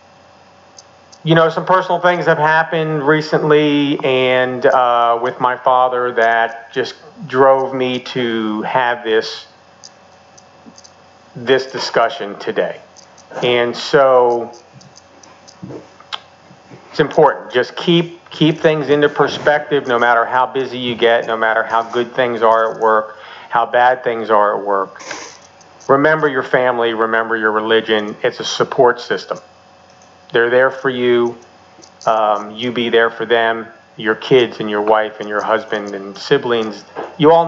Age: 40-59